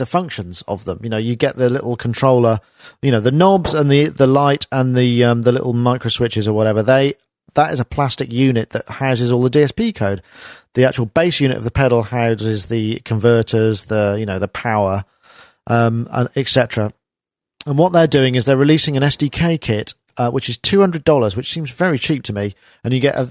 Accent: British